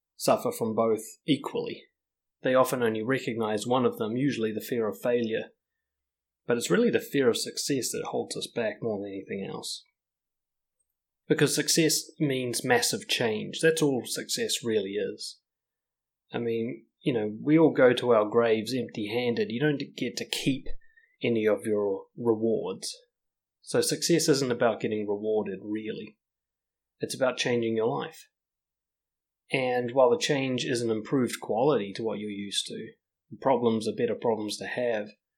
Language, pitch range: English, 110-150 Hz